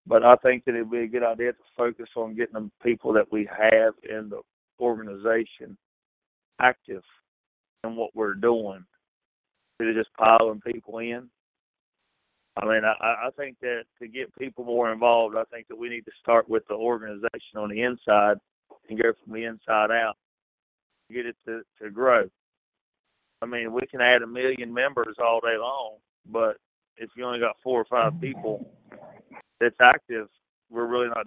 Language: English